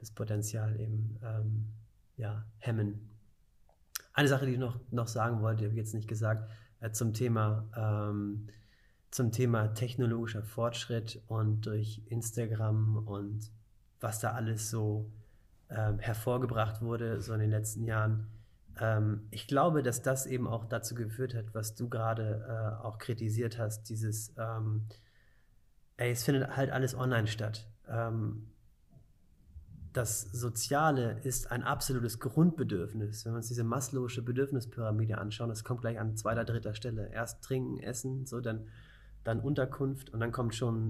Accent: German